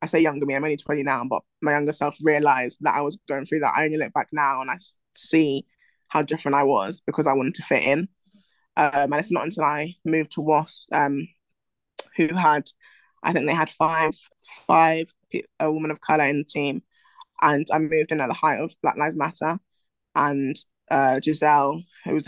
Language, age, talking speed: English, 20-39, 205 wpm